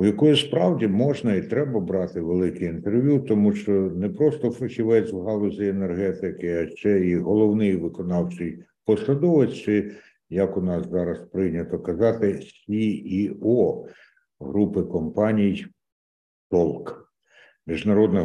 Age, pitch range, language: 60-79, 90-125 Hz, Ukrainian